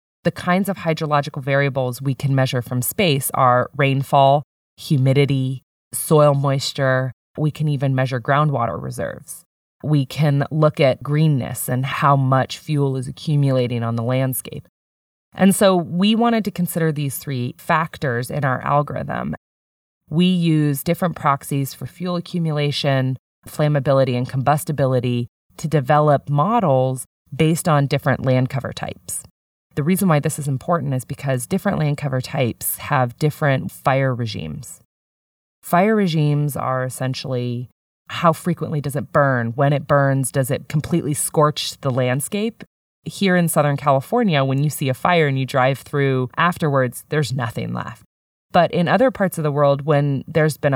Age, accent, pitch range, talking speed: 20-39, American, 130-155 Hz, 150 wpm